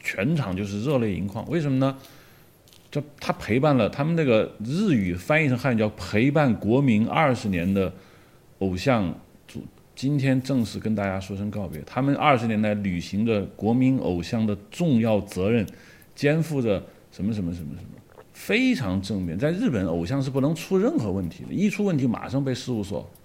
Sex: male